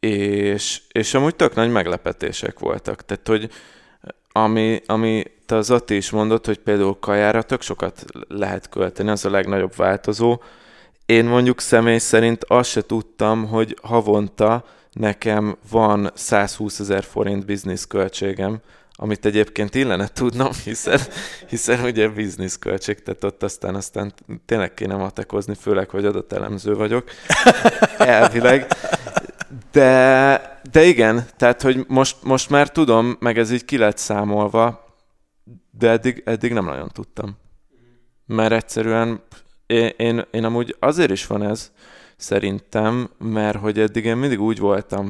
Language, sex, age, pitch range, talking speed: Hungarian, male, 20-39, 100-115 Hz, 135 wpm